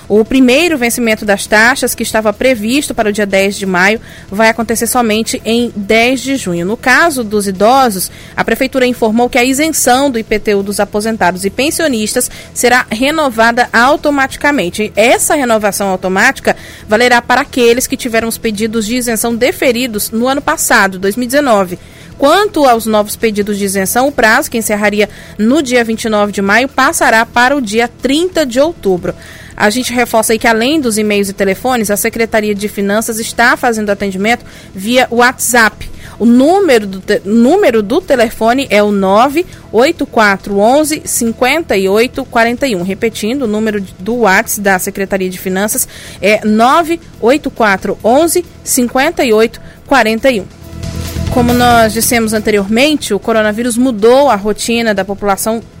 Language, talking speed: Portuguese, 140 wpm